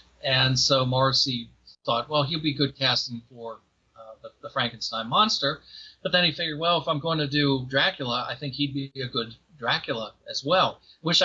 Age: 40-59